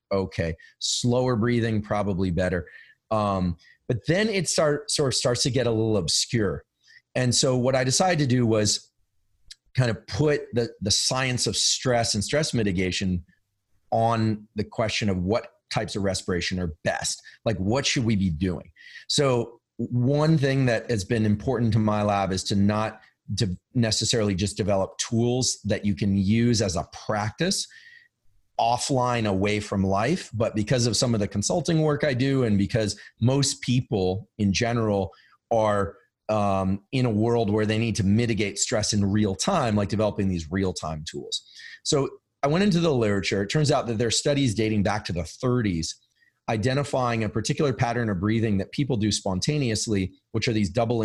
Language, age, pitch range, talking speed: English, 30-49, 100-125 Hz, 175 wpm